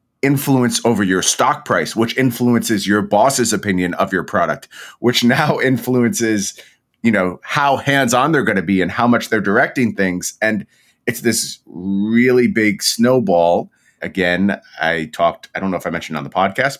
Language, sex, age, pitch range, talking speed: English, male, 30-49, 95-120 Hz, 175 wpm